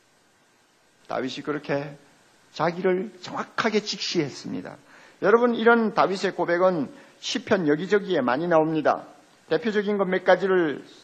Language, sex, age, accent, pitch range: Korean, male, 50-69, native, 175-220 Hz